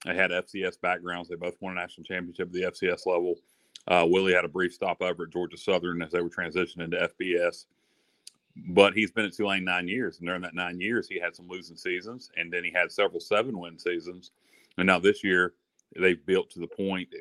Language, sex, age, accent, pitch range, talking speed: English, male, 40-59, American, 90-105 Hz, 215 wpm